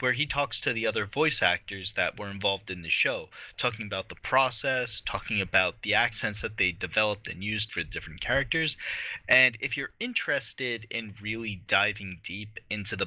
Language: English